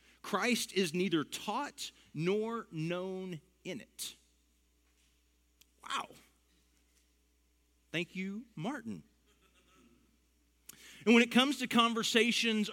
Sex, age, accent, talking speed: male, 40-59, American, 85 wpm